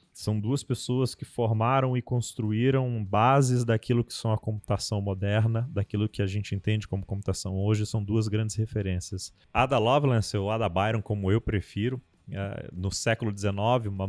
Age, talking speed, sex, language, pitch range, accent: 20-39, 165 wpm, male, Portuguese, 100-115 Hz, Brazilian